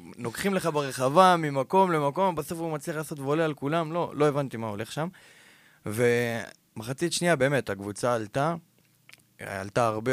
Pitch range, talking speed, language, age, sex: 110-150 Hz, 150 wpm, Hebrew, 20-39, male